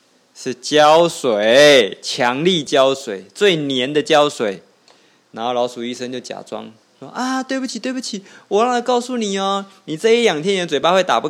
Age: 20-39